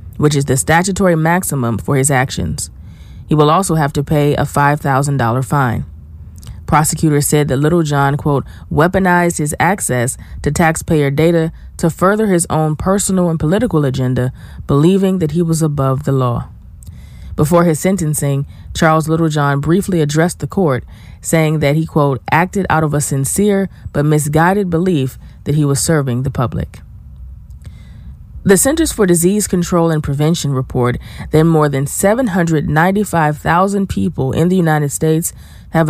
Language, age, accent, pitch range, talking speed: English, 20-39, American, 140-175 Hz, 145 wpm